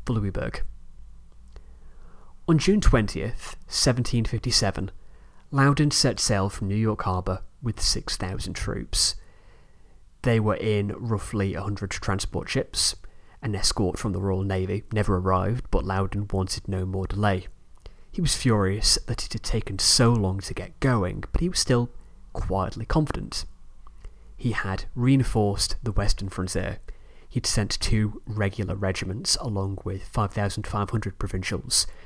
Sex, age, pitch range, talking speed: male, 20-39, 95-120 Hz, 130 wpm